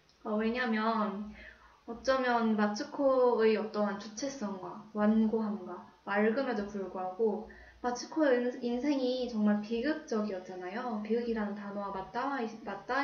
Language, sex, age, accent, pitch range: Korean, female, 20-39, native, 210-245 Hz